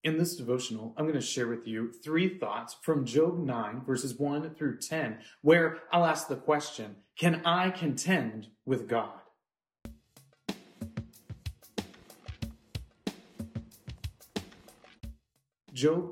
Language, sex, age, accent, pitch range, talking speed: English, male, 30-49, American, 145-210 Hz, 110 wpm